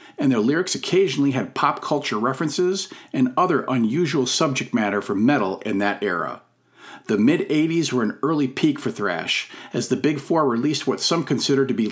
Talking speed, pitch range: 180 wpm, 125-165 Hz